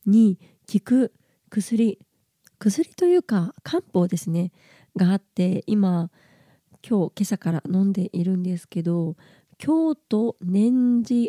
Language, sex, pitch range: Japanese, female, 175-225 Hz